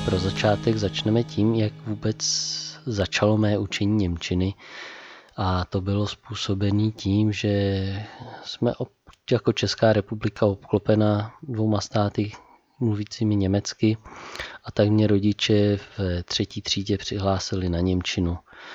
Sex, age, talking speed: male, 20-39, 115 wpm